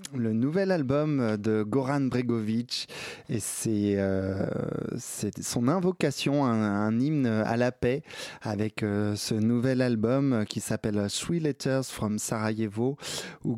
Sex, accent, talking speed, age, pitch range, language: male, French, 130 wpm, 20-39, 105-130 Hz, French